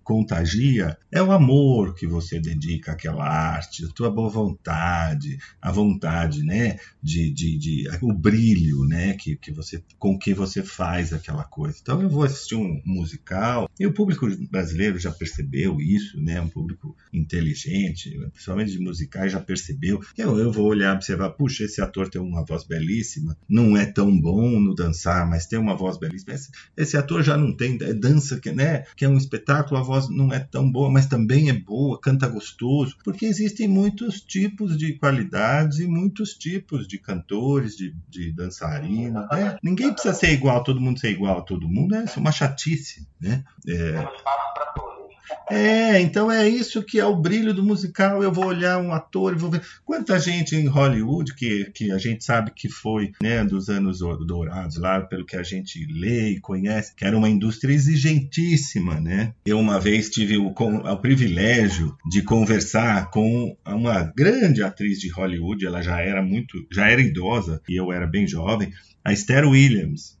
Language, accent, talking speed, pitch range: Portuguese, Brazilian, 180 wpm, 95-145 Hz